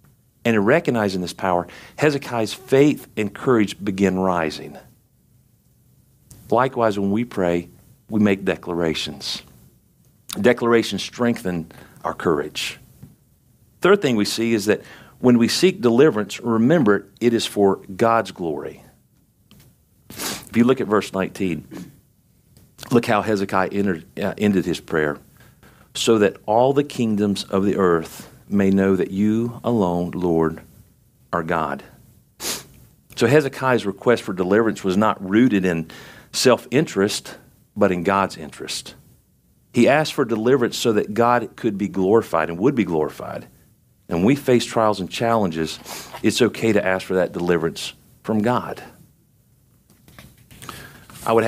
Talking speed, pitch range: 135 wpm, 95-120 Hz